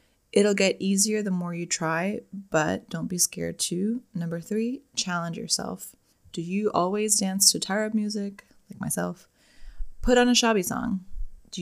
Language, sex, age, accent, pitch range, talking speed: English, female, 20-39, American, 165-215 Hz, 160 wpm